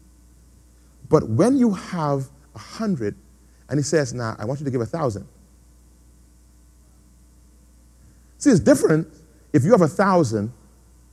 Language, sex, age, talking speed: English, male, 40-59, 135 wpm